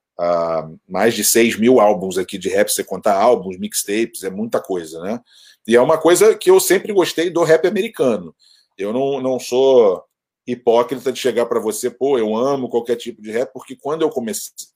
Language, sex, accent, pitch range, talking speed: Portuguese, male, Brazilian, 120-155 Hz, 195 wpm